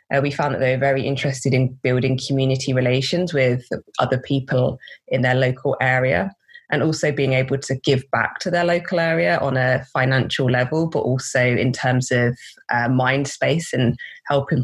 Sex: female